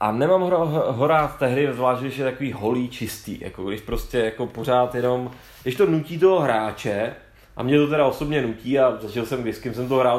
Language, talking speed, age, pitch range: Czech, 200 wpm, 30-49, 115-150 Hz